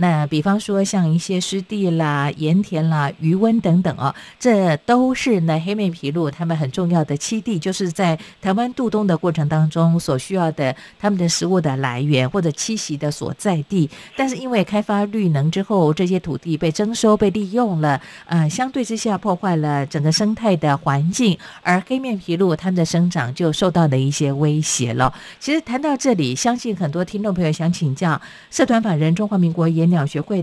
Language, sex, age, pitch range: Chinese, female, 50-69, 155-210 Hz